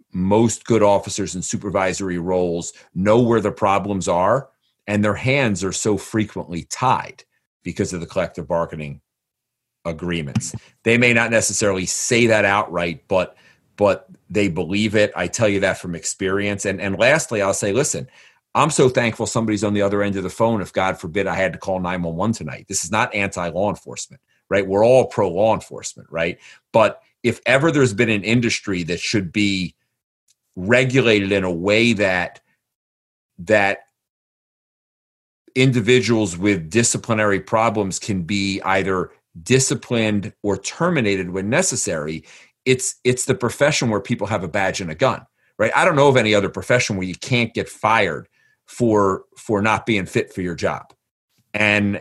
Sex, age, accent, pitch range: male, 40-59, American, 95-115 Hz